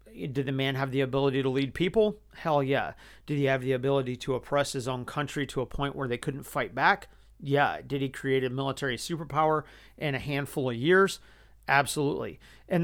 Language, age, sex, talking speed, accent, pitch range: English, 40-59, male, 200 wpm, American, 135-165 Hz